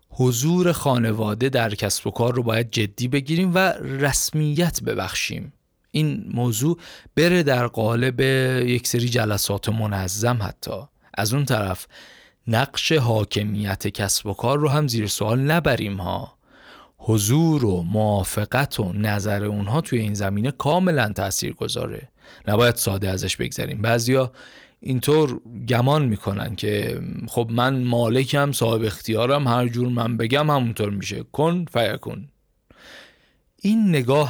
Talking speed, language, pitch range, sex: 130 wpm, Persian, 105-140 Hz, male